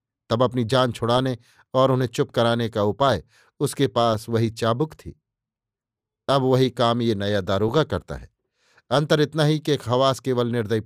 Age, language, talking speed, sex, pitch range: 50-69, Hindi, 165 wpm, male, 115-140 Hz